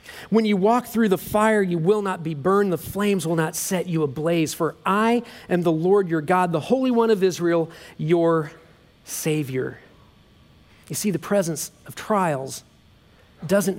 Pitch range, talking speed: 160-210 Hz, 170 wpm